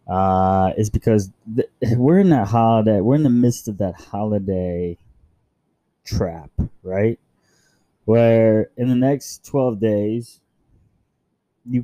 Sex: male